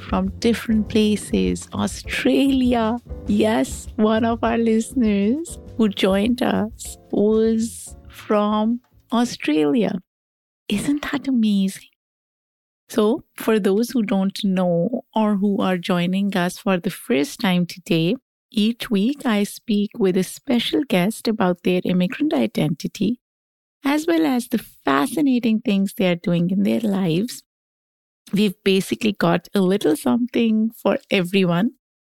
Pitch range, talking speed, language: 190-240 Hz, 125 wpm, English